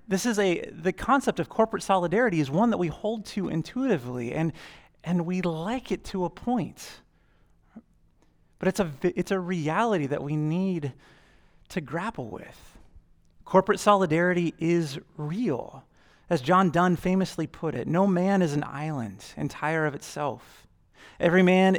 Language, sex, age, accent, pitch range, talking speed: English, male, 30-49, American, 145-180 Hz, 150 wpm